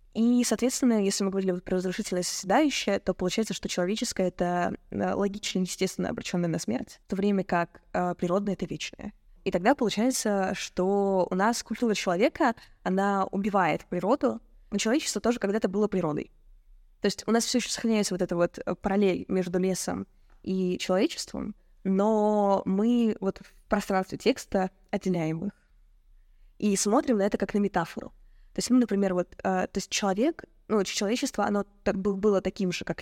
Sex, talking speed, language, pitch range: female, 165 wpm, Russian, 185-220 Hz